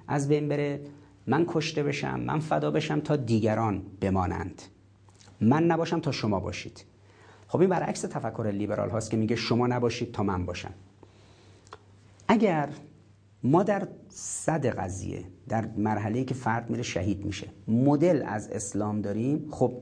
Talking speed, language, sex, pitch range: 145 wpm, Persian, male, 105-150 Hz